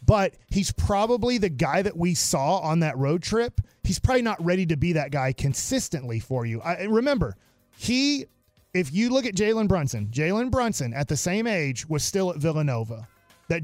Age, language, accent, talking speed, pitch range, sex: 30-49, English, American, 185 wpm, 145-185 Hz, male